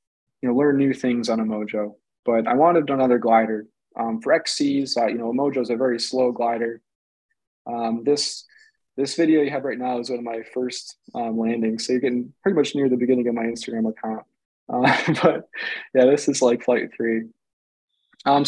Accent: American